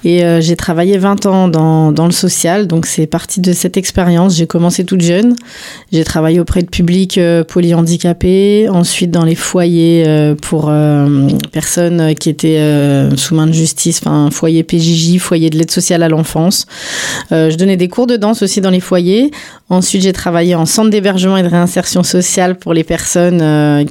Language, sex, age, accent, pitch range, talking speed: French, female, 30-49, French, 165-185 Hz, 190 wpm